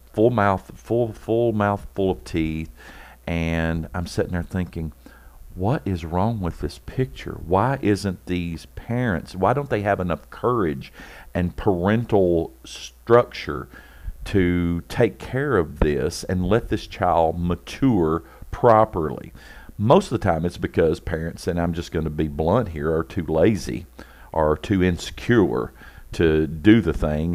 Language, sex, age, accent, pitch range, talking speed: English, male, 50-69, American, 80-105 Hz, 150 wpm